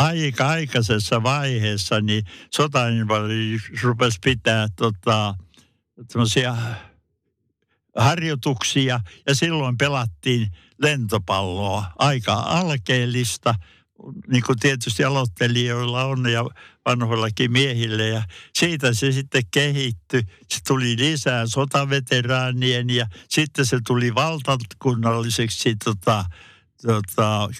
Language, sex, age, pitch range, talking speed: Finnish, male, 60-79, 110-135 Hz, 85 wpm